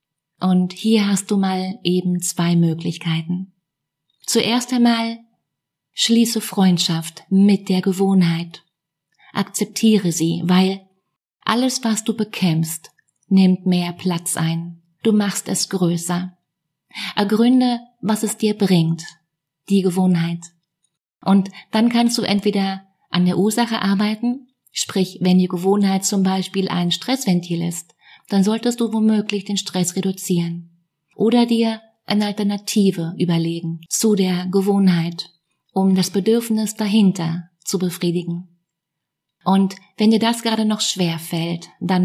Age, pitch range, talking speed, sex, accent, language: 30-49, 170-210 Hz, 120 wpm, female, German, German